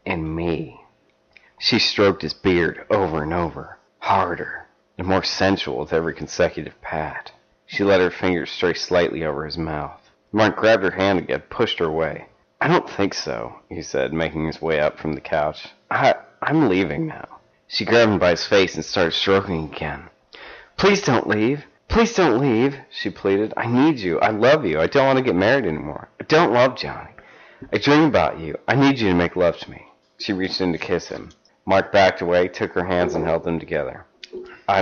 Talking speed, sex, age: 195 wpm, male, 30-49